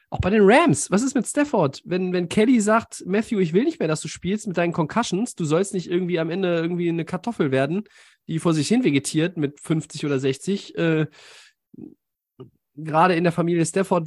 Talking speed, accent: 205 wpm, German